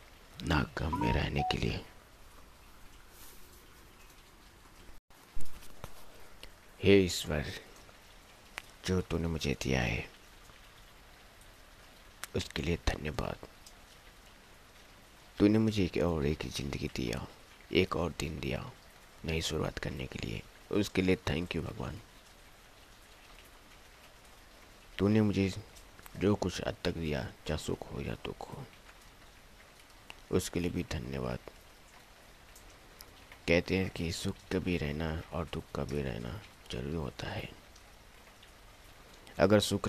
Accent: native